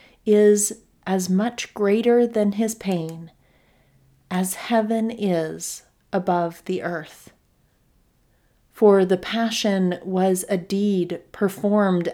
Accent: American